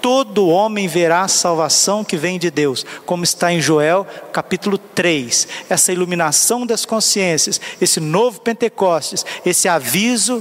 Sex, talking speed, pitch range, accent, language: male, 140 wpm, 165-205 Hz, Brazilian, Portuguese